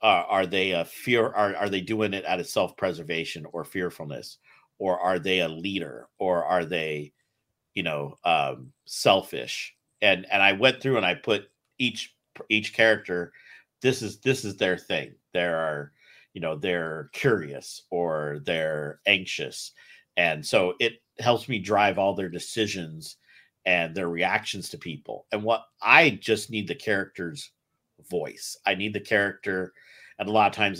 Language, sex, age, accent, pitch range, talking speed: English, male, 50-69, American, 85-105 Hz, 165 wpm